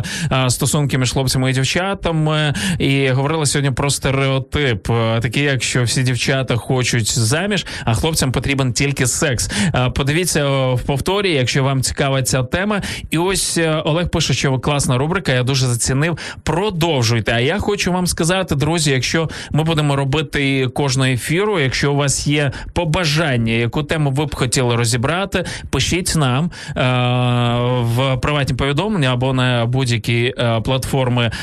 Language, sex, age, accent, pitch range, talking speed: Ukrainian, male, 20-39, native, 125-155 Hz, 135 wpm